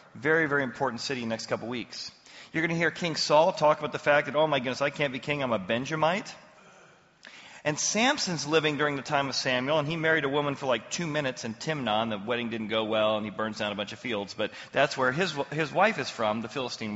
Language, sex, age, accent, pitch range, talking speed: English, male, 40-59, American, 125-175 Hz, 260 wpm